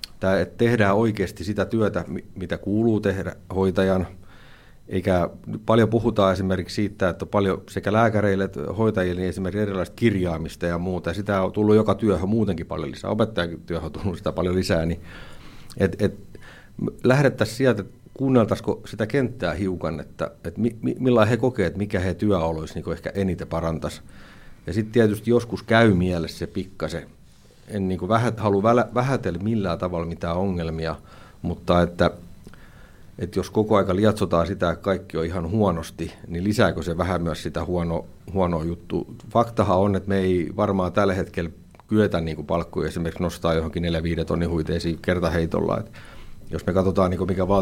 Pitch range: 85-105 Hz